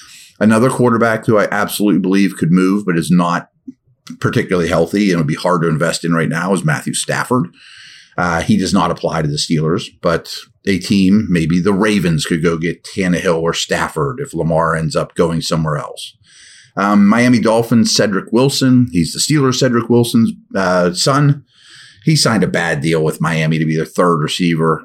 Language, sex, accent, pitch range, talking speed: English, male, American, 85-115 Hz, 185 wpm